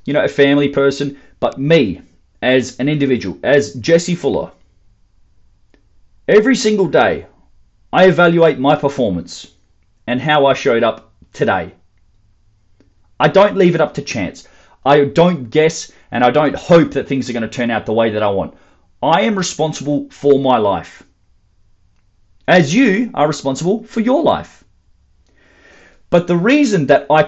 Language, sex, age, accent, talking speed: English, male, 30-49, Australian, 155 wpm